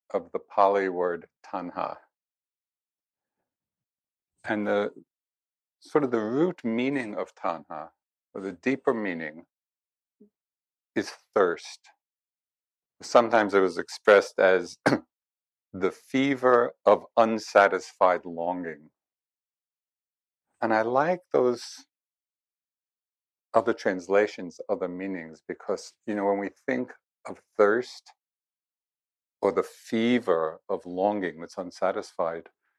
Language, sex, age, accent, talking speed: English, male, 50-69, American, 95 wpm